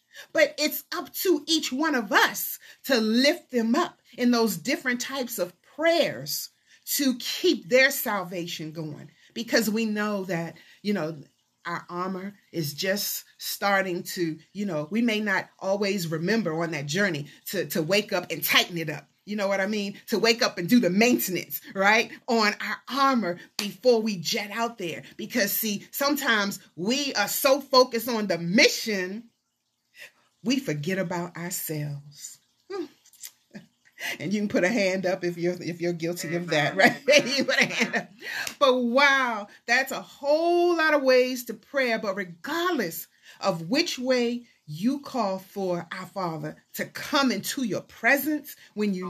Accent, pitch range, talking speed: American, 180-265 Hz, 160 wpm